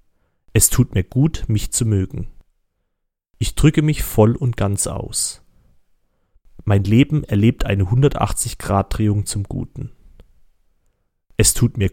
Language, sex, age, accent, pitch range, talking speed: German, male, 30-49, German, 95-120 Hz, 120 wpm